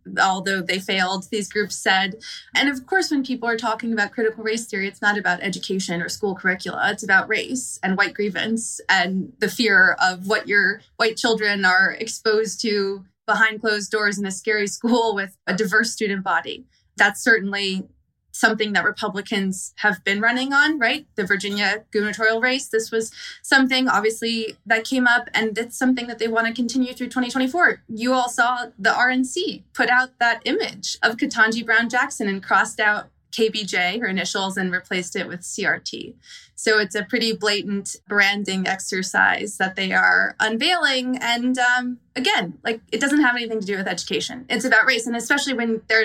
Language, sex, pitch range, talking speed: English, female, 200-240 Hz, 180 wpm